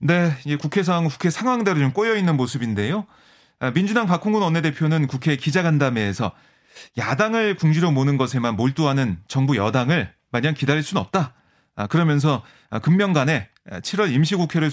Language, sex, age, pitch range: Korean, male, 30-49, 130-175 Hz